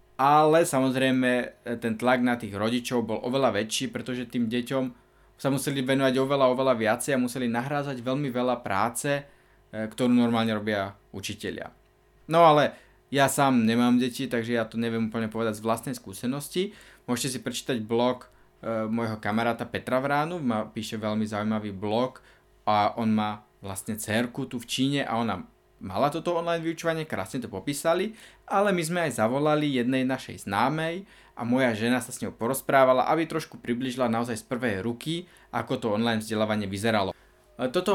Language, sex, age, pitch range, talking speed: Slovak, male, 20-39, 110-135 Hz, 165 wpm